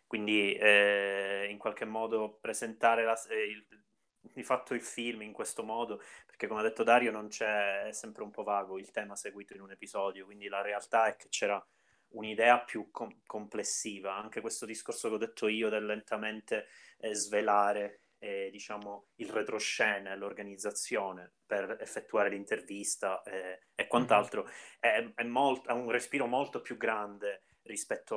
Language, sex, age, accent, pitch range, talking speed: Italian, male, 20-39, native, 105-120 Hz, 160 wpm